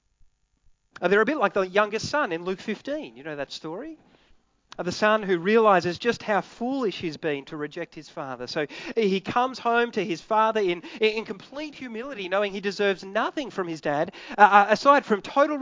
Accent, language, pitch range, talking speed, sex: Australian, English, 185-240 Hz, 195 wpm, male